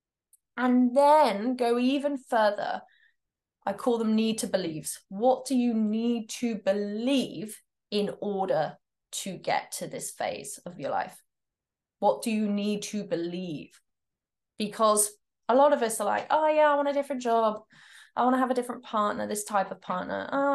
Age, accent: 20-39, British